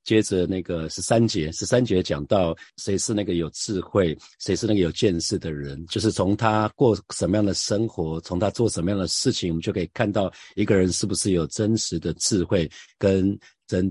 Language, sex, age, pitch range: Chinese, male, 50-69, 85-110 Hz